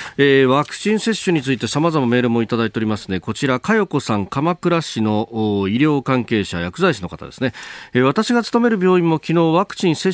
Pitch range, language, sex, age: 105-150 Hz, Japanese, male, 40-59